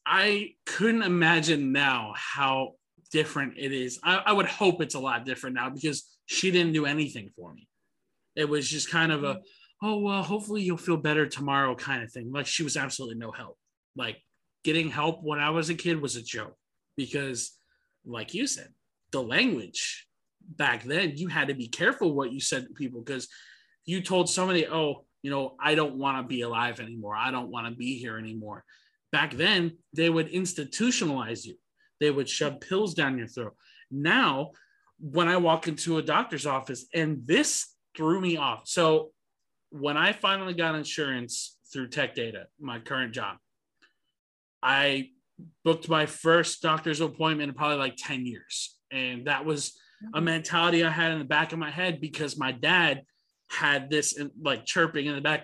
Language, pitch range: English, 135-170 Hz